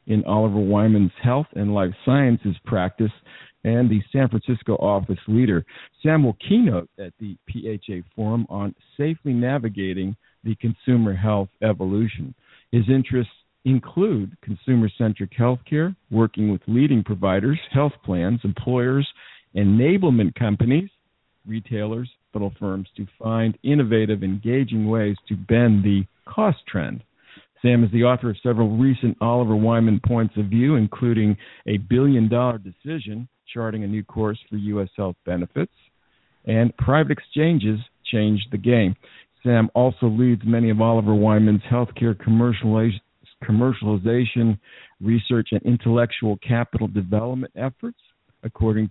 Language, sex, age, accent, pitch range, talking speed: English, male, 50-69, American, 105-125 Hz, 130 wpm